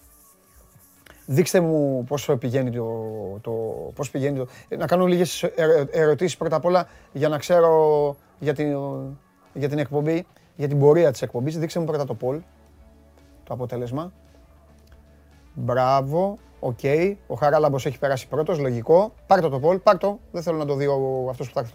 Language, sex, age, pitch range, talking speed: Greek, male, 30-49, 130-175 Hz, 150 wpm